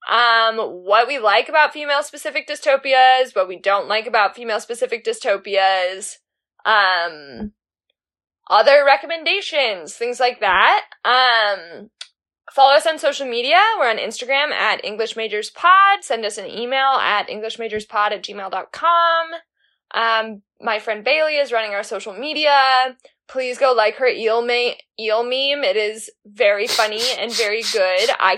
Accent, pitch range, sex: American, 215-285 Hz, female